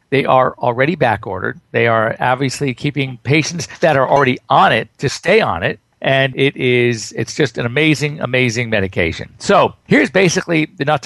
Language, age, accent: English, 50-69, American